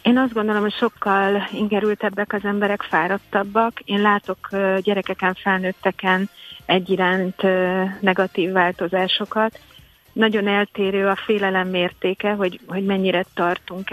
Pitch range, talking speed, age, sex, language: 175-200 Hz, 110 wpm, 30-49, female, Hungarian